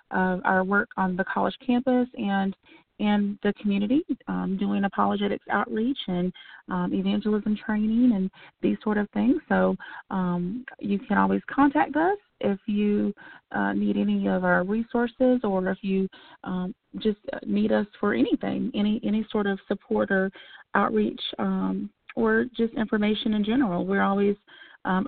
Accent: American